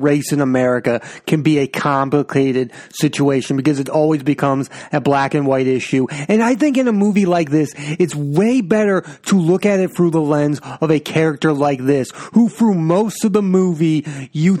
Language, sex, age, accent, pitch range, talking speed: English, male, 30-49, American, 145-190 Hz, 195 wpm